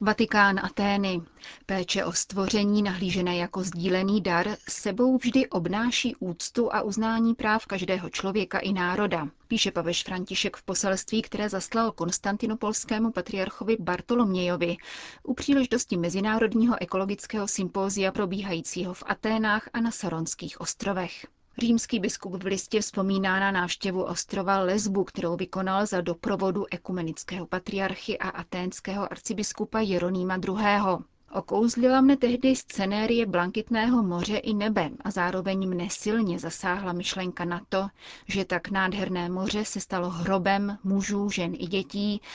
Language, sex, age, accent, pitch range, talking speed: Czech, female, 30-49, native, 180-215 Hz, 125 wpm